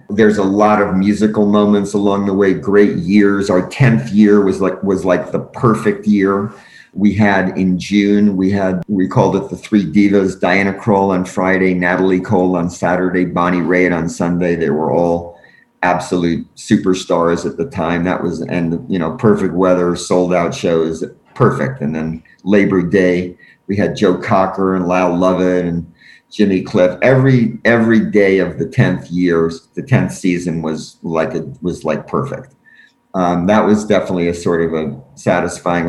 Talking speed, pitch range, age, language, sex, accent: 170 wpm, 90-105 Hz, 50-69, English, male, American